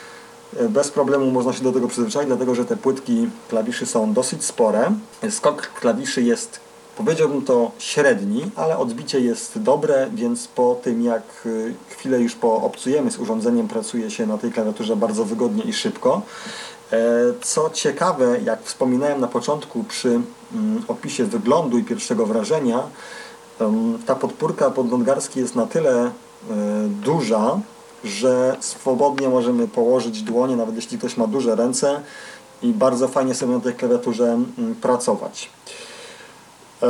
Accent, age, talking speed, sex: native, 40-59, 130 wpm, male